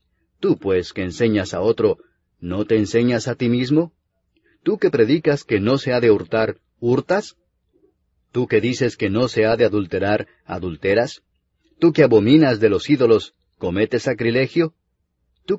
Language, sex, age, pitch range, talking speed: English, male, 40-59, 105-140 Hz, 160 wpm